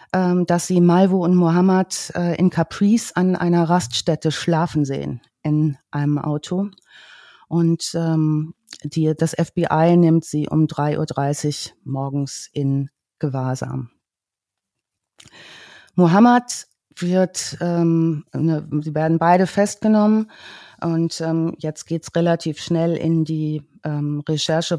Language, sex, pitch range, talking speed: German, female, 145-170 Hz, 110 wpm